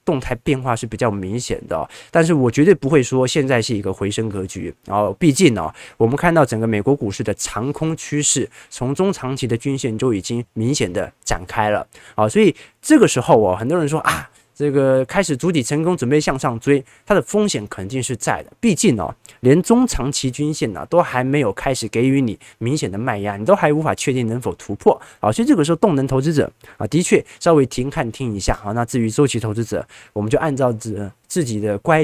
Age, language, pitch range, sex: 20-39, Chinese, 110-140 Hz, male